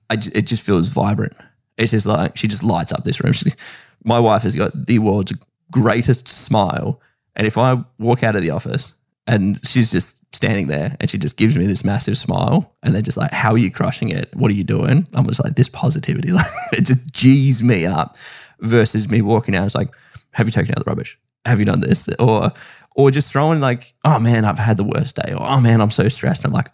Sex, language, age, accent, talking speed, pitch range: male, English, 10-29, Australian, 235 wpm, 110-150 Hz